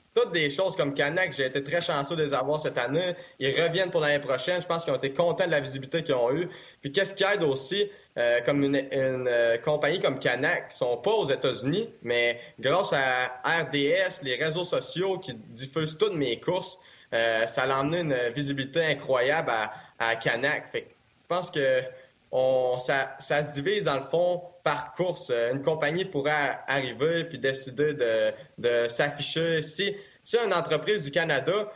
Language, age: French, 20-39